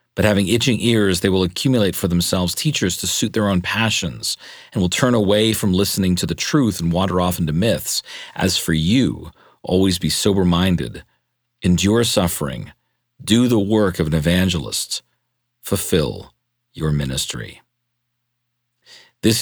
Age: 40-59